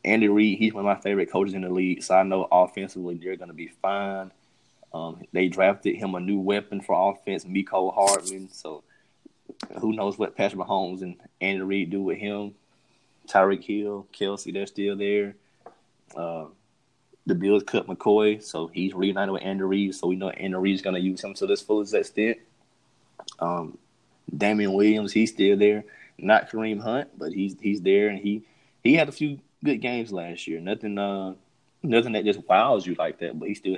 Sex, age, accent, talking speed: male, 20-39, American, 190 wpm